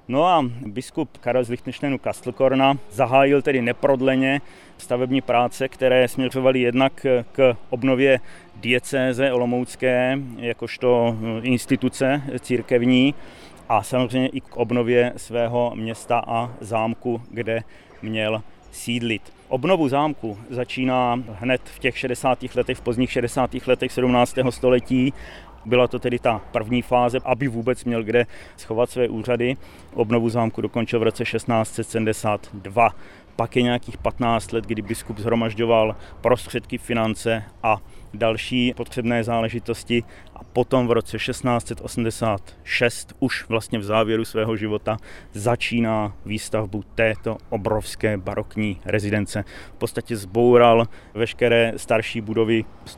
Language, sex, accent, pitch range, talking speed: Czech, male, native, 110-125 Hz, 120 wpm